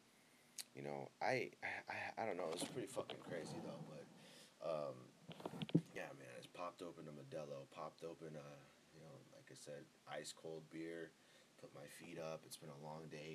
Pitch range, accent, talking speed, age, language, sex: 85-130 Hz, American, 190 wpm, 30-49, English, male